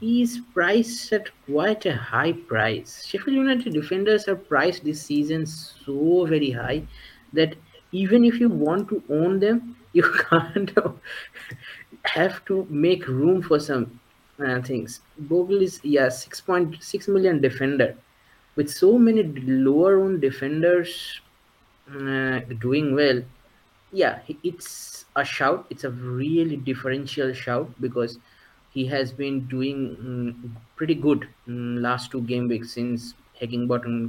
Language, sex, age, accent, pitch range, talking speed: English, male, 20-39, Indian, 120-160 Hz, 130 wpm